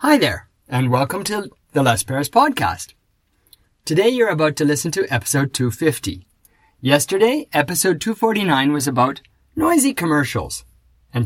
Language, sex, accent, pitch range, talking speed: English, male, American, 120-160 Hz, 135 wpm